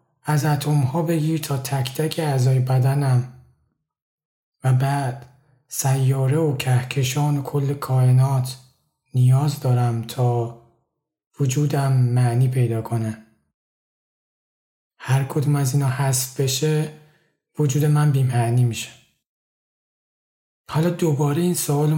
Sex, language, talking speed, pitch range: male, Persian, 105 wpm, 130-150 Hz